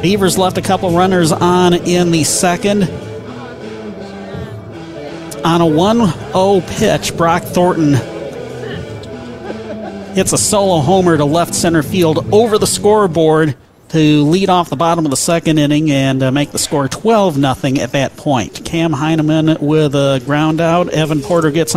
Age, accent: 40-59, American